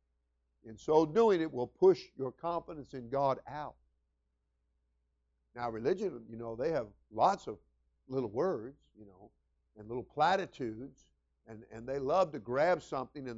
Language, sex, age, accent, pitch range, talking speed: English, male, 50-69, American, 105-145 Hz, 150 wpm